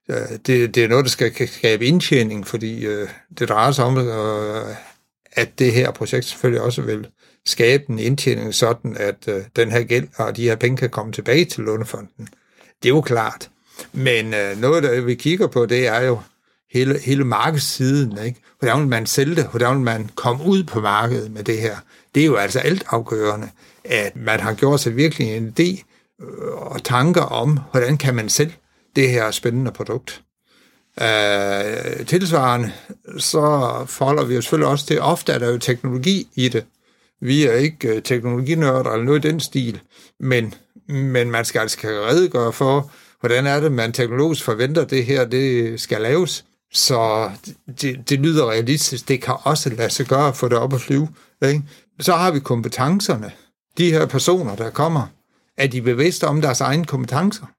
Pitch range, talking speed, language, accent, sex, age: 115-145 Hz, 175 wpm, Danish, native, male, 60-79